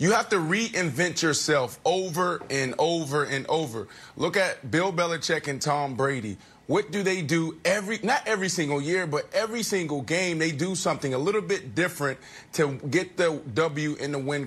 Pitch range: 165-220 Hz